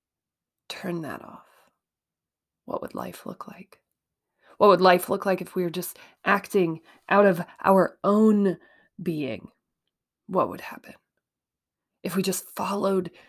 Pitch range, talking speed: 180-215 Hz, 135 wpm